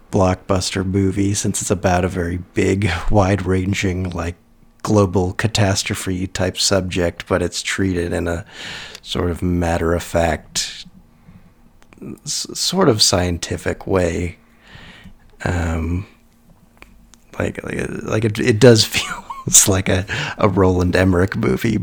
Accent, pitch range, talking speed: American, 90-105 Hz, 125 wpm